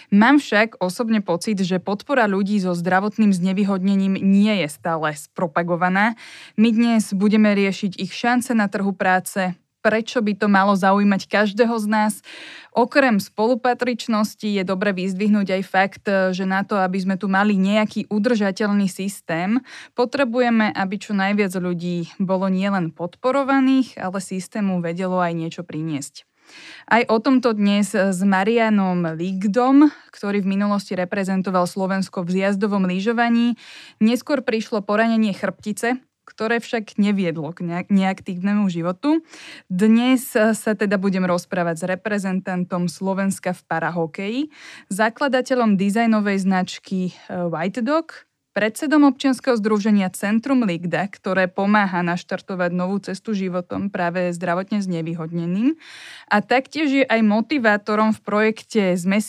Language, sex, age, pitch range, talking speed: Slovak, female, 20-39, 185-220 Hz, 125 wpm